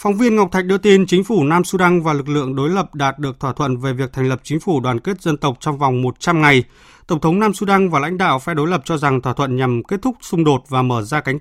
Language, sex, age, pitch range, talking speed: Vietnamese, male, 20-39, 130-180 Hz, 295 wpm